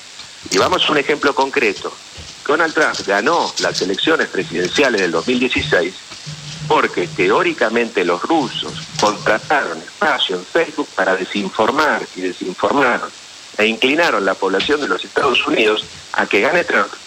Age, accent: 50-69, Argentinian